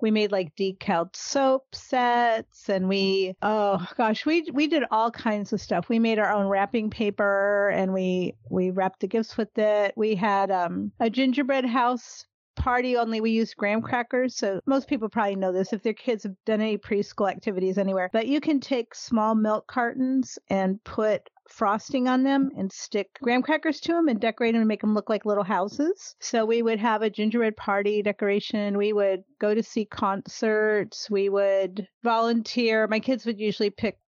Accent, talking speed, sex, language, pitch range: American, 190 wpm, female, English, 195-235 Hz